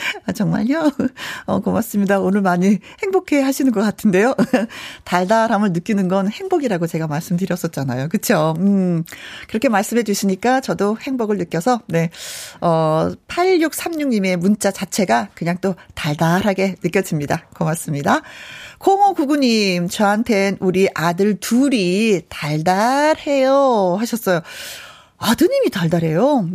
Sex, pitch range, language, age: female, 170-250 Hz, Korean, 40-59